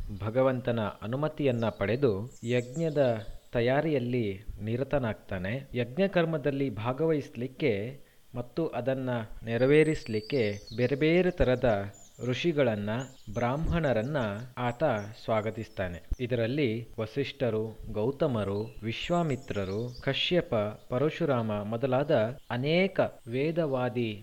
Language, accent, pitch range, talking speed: Kannada, native, 110-145 Hz, 70 wpm